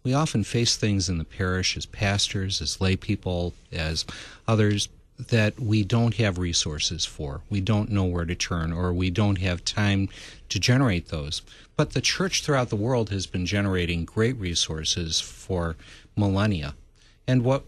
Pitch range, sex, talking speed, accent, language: 90-115 Hz, male, 165 wpm, American, English